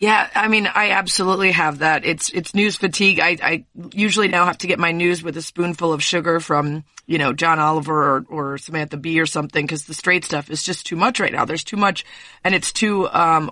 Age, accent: 30-49, American